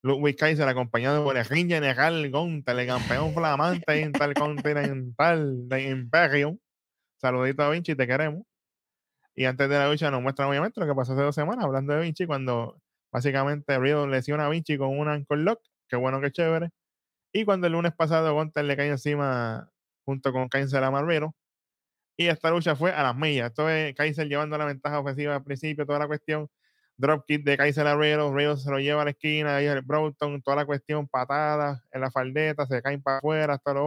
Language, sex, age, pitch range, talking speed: Spanish, male, 10-29, 135-155 Hz, 195 wpm